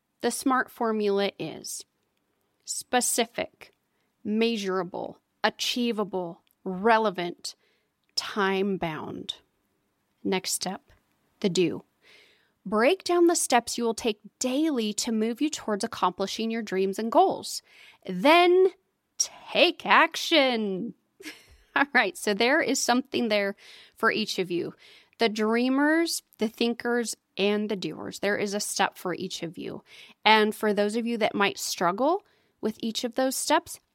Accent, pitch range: American, 205-270 Hz